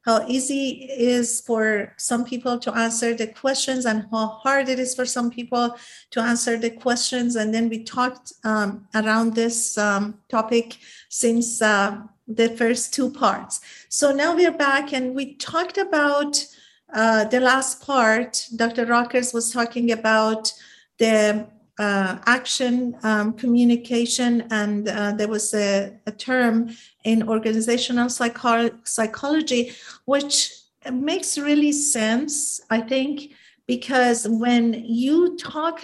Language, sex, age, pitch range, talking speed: English, female, 50-69, 225-265 Hz, 135 wpm